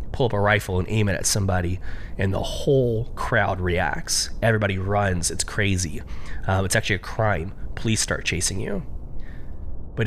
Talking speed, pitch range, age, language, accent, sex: 165 wpm, 80-105 Hz, 20-39, English, American, male